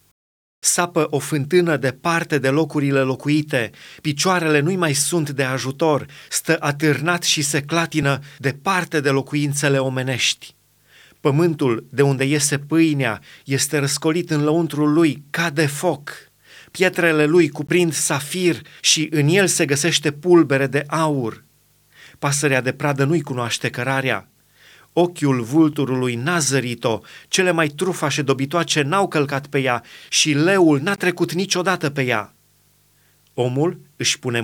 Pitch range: 135-160 Hz